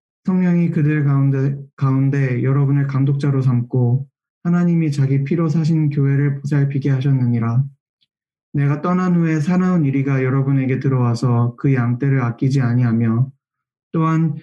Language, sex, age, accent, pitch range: Korean, male, 20-39, native, 130-145 Hz